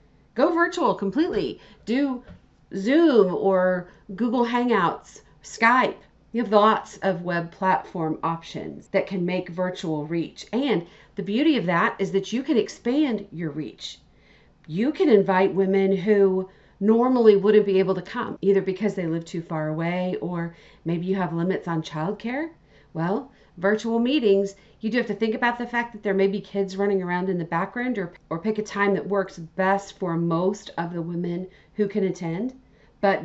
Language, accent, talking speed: English, American, 175 wpm